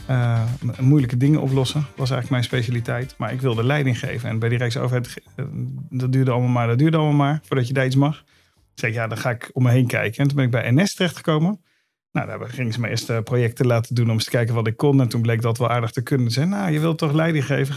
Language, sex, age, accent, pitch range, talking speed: Dutch, male, 50-69, Dutch, 115-135 Hz, 270 wpm